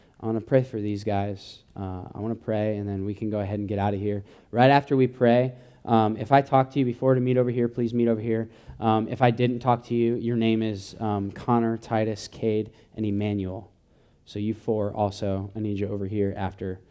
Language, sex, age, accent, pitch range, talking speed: English, male, 20-39, American, 95-110 Hz, 240 wpm